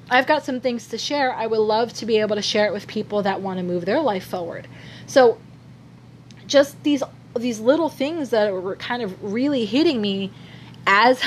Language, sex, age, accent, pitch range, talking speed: English, female, 30-49, American, 190-240 Hz, 200 wpm